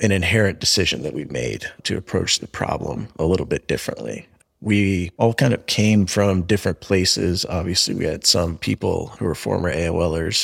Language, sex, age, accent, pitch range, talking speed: English, male, 30-49, American, 85-100 Hz, 180 wpm